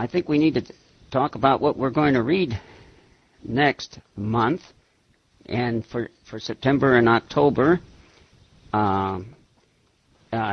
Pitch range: 110-140 Hz